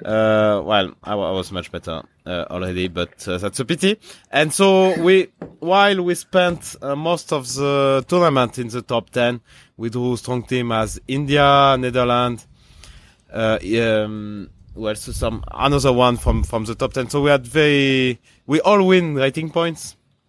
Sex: male